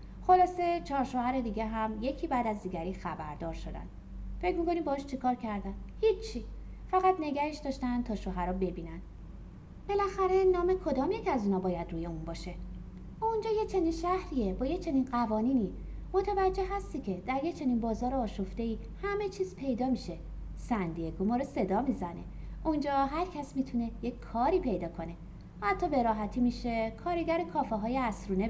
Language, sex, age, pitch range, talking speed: Persian, female, 30-49, 195-325 Hz, 155 wpm